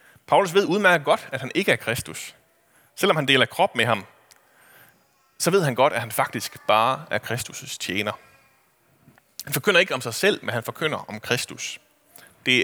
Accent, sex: native, male